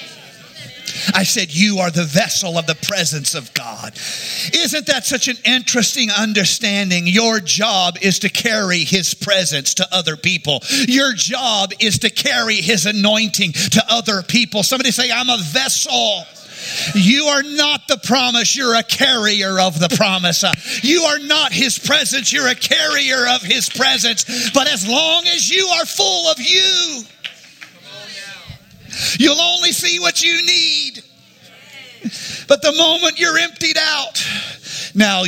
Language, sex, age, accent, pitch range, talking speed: English, male, 50-69, American, 170-255 Hz, 145 wpm